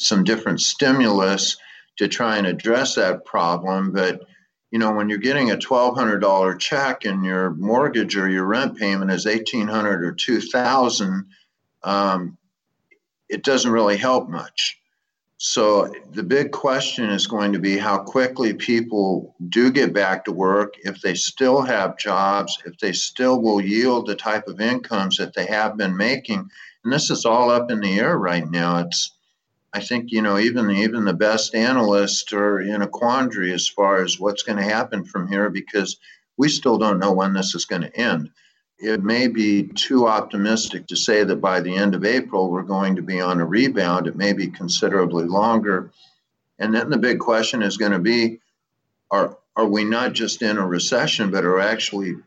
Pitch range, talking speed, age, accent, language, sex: 95-110 Hz, 185 wpm, 50-69, American, English, male